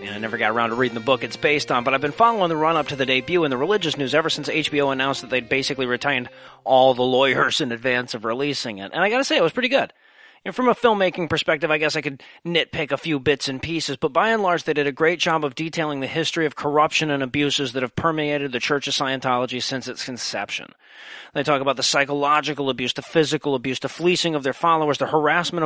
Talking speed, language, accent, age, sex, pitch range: 250 wpm, English, American, 30-49, male, 145-195 Hz